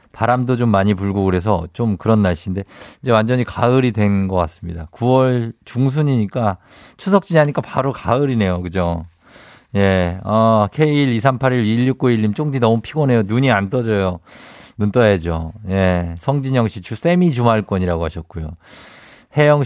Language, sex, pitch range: Korean, male, 105-150 Hz